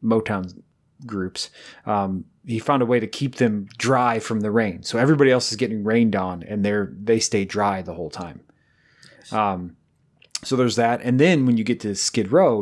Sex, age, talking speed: male, 30-49, 195 wpm